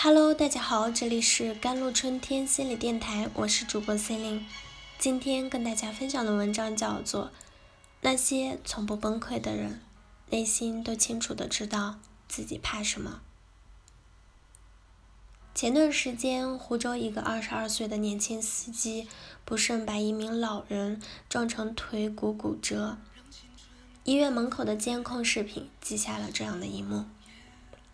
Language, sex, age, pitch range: Chinese, female, 10-29, 200-245 Hz